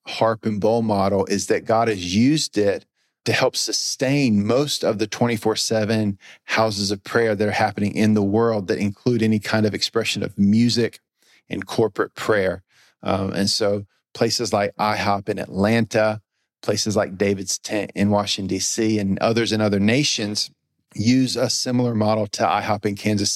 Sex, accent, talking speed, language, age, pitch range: male, American, 165 wpm, English, 40-59, 105-120 Hz